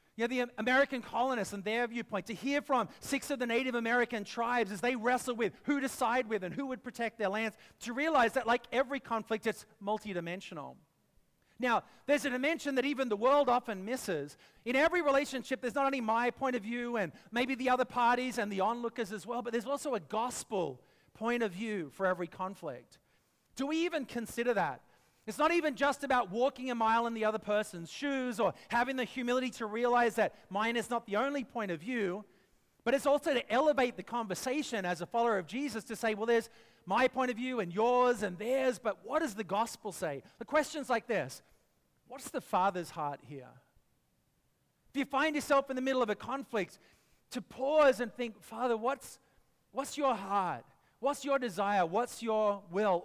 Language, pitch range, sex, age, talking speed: English, 215-265 Hz, male, 40-59, 200 wpm